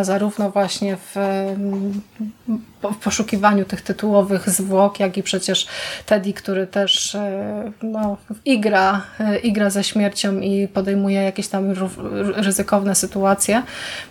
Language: Polish